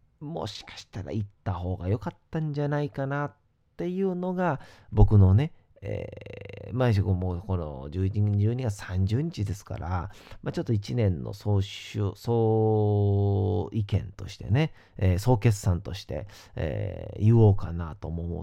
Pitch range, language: 95-110 Hz, Japanese